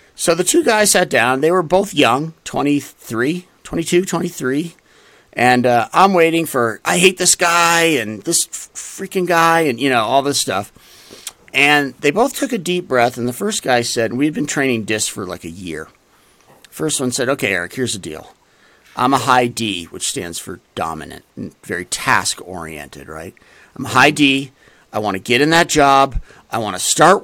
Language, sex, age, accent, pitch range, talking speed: English, male, 50-69, American, 135-180 Hz, 195 wpm